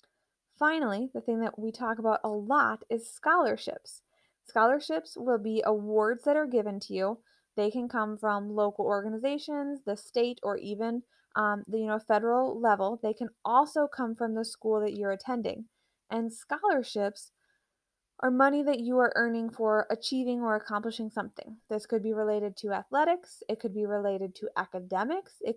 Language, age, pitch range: English, 20-39, 210-255 Hz